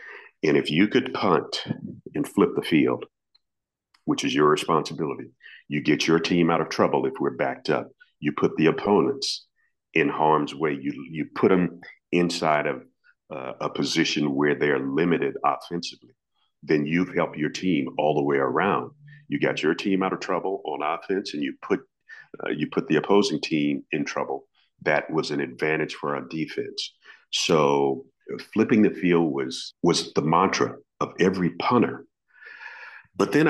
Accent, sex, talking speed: American, male, 165 wpm